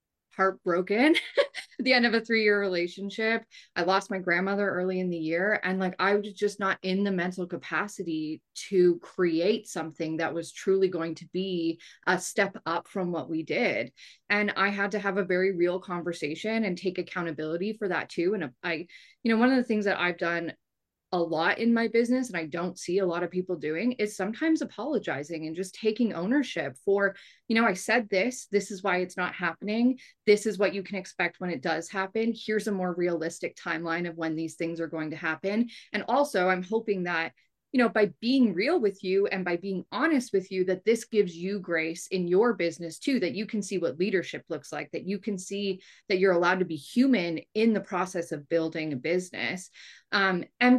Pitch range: 175-210 Hz